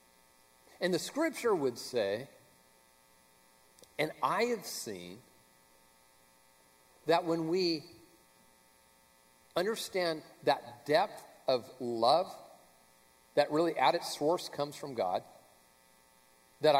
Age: 50-69